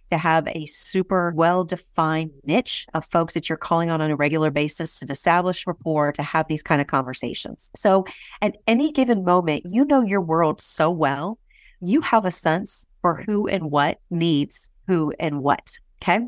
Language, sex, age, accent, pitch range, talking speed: English, female, 30-49, American, 160-210 Hz, 180 wpm